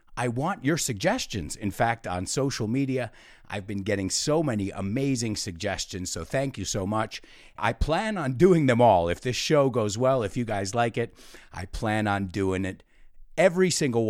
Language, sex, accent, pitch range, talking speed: English, male, American, 100-140 Hz, 185 wpm